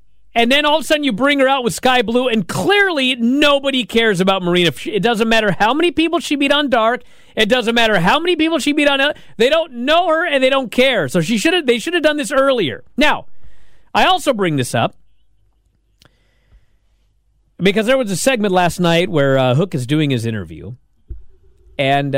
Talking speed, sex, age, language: 210 wpm, male, 40-59, English